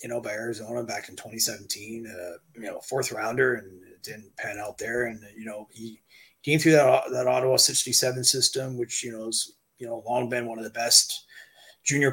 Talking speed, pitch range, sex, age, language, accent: 210 wpm, 115-135 Hz, male, 30-49, English, American